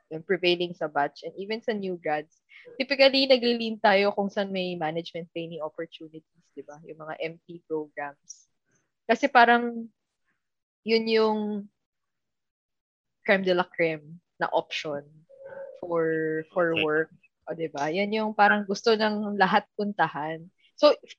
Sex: female